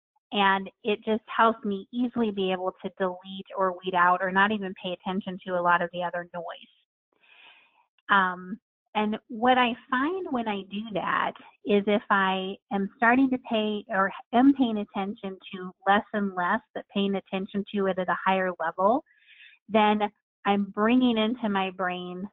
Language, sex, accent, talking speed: English, female, American, 170 wpm